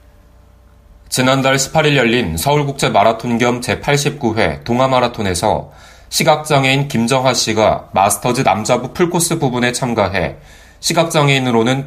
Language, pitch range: Korean, 105-140 Hz